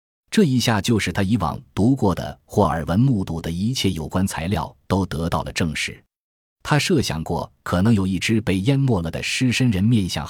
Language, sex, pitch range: Chinese, male, 85-115 Hz